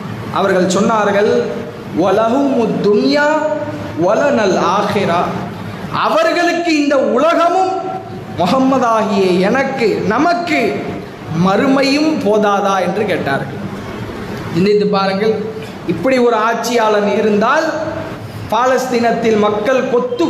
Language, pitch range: English, 210-290 Hz